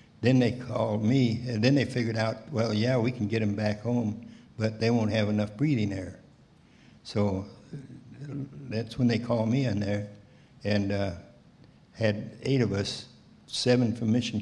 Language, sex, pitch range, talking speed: English, male, 105-125 Hz, 170 wpm